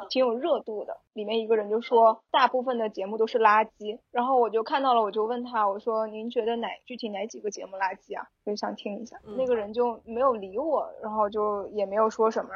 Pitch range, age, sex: 215-245 Hz, 20-39, female